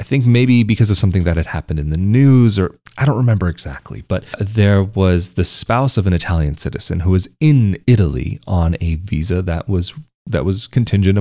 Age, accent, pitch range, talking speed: 30-49, American, 85-115 Hz, 205 wpm